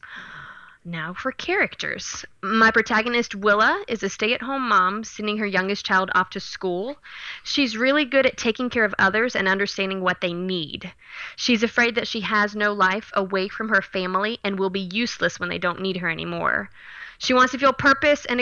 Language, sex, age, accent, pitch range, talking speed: English, female, 20-39, American, 190-240 Hz, 190 wpm